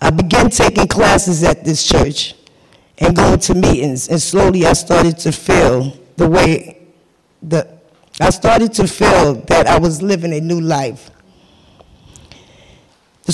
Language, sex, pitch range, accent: English, female, 155-180 Hz, American